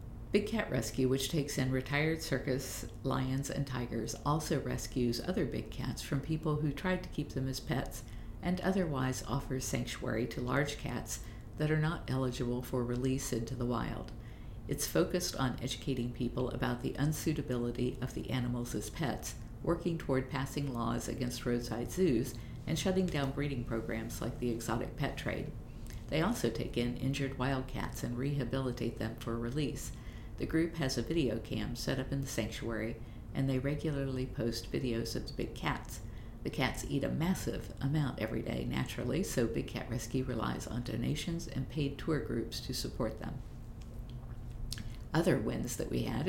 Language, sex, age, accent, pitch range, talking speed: English, female, 50-69, American, 115-140 Hz, 170 wpm